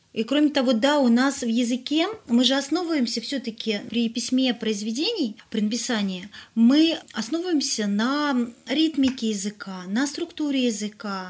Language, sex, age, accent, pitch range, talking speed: Russian, female, 30-49, native, 200-255 Hz, 140 wpm